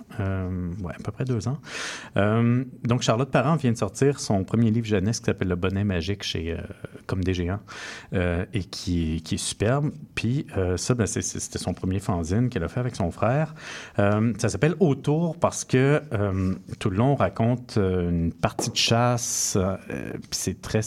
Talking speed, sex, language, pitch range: 195 wpm, male, French, 95-120 Hz